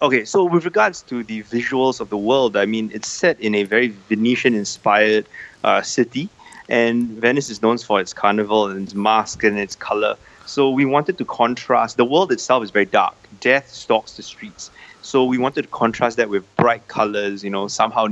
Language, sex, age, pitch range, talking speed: English, male, 20-39, 105-130 Hz, 195 wpm